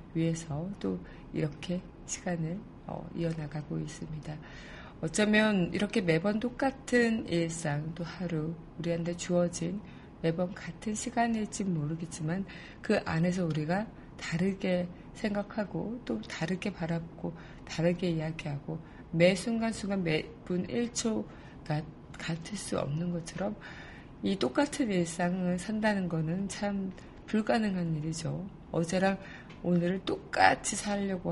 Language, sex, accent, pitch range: Korean, female, native, 165-200 Hz